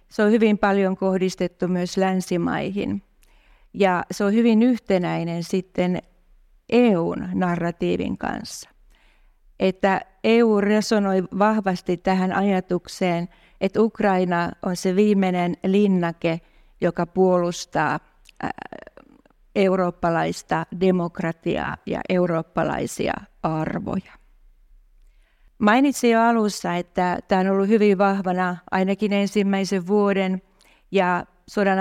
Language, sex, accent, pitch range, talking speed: Finnish, female, native, 180-200 Hz, 90 wpm